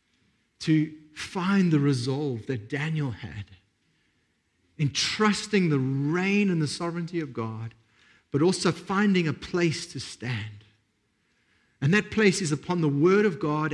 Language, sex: English, male